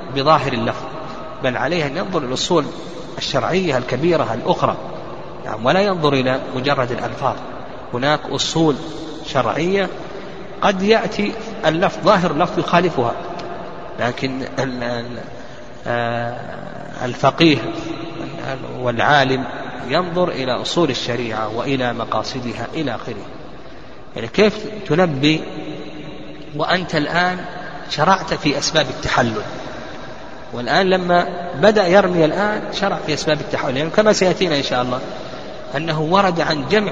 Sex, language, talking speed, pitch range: male, Arabic, 105 wpm, 130-180 Hz